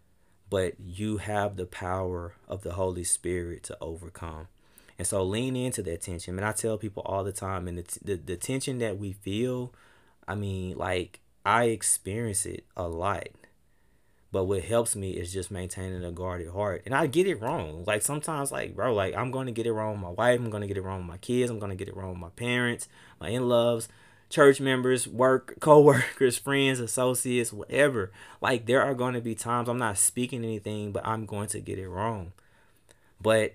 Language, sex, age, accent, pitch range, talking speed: English, male, 20-39, American, 90-115 Hz, 205 wpm